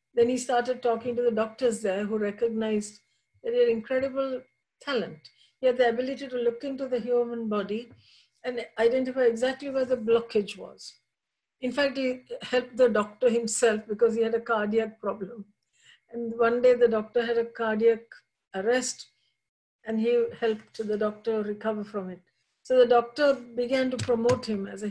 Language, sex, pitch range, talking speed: English, female, 220-250 Hz, 170 wpm